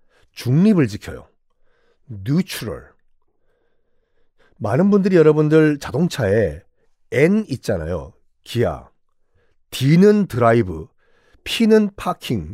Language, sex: Korean, male